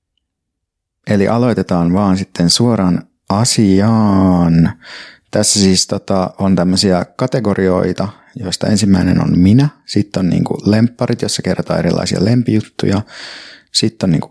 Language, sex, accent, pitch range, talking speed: Finnish, male, native, 90-110 Hz, 115 wpm